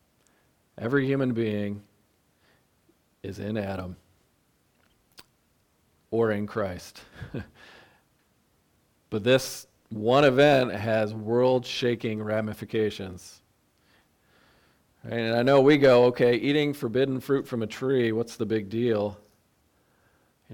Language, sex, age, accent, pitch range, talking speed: English, male, 40-59, American, 105-130 Hz, 95 wpm